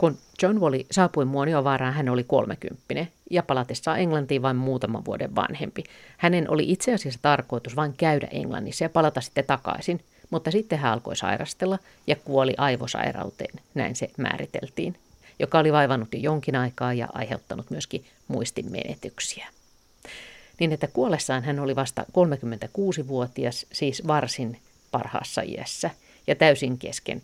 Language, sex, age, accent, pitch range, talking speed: Finnish, female, 50-69, native, 125-155 Hz, 140 wpm